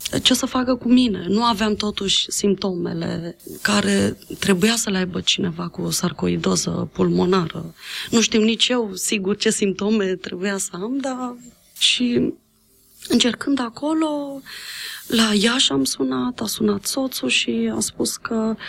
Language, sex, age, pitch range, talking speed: Romanian, female, 20-39, 205-275 Hz, 140 wpm